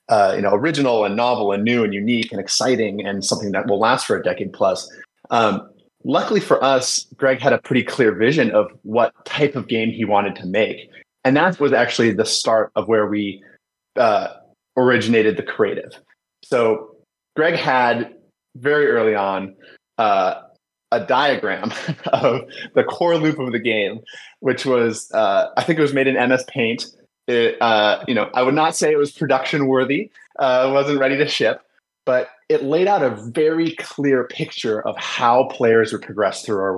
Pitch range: 115-150 Hz